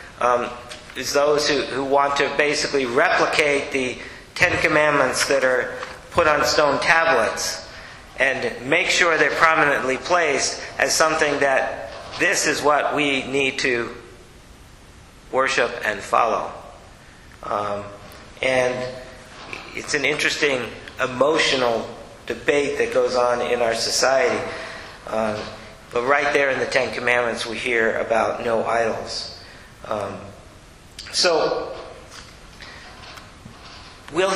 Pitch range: 120-150 Hz